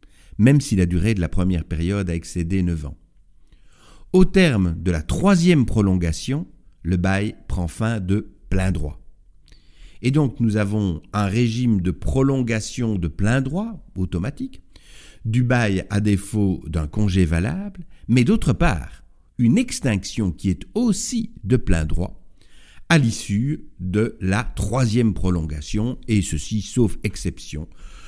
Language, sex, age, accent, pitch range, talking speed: French, male, 60-79, French, 90-120 Hz, 140 wpm